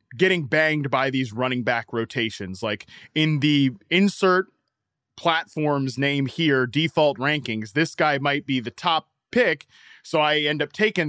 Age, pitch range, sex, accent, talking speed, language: 20-39, 130-165 Hz, male, American, 150 wpm, English